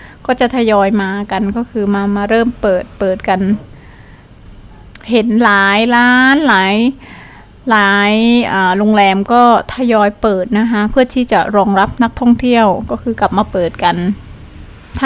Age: 20-39